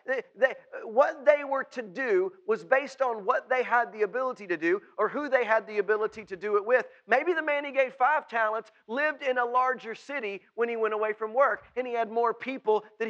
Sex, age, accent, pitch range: male, 40-59, American, 220-275 Hz